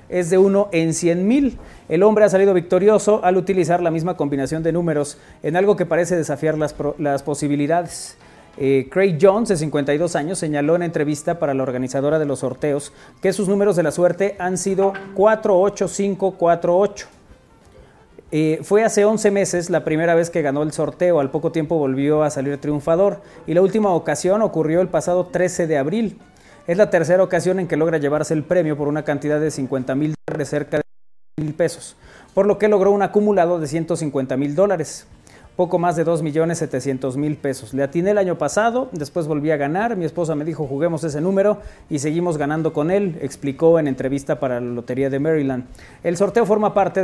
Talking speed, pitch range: 195 wpm, 150-185 Hz